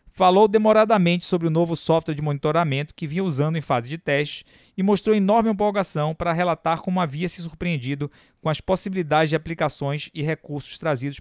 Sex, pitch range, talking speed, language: male, 145-185 Hz, 175 wpm, Portuguese